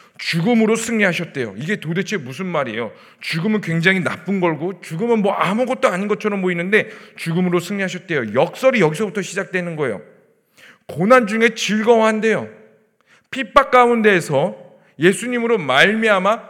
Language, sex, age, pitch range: Korean, male, 40-59, 175-230 Hz